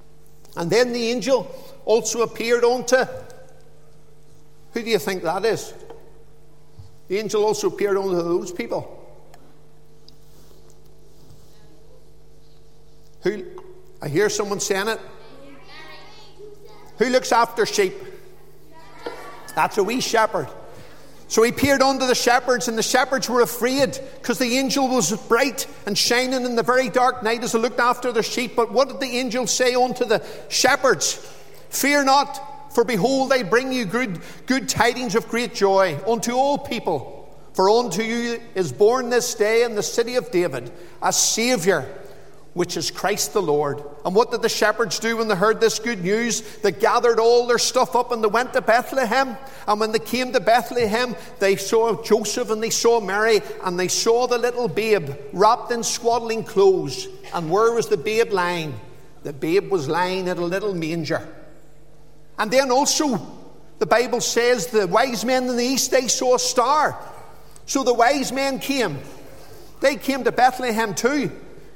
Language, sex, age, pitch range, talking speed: English, male, 50-69, 195-255 Hz, 160 wpm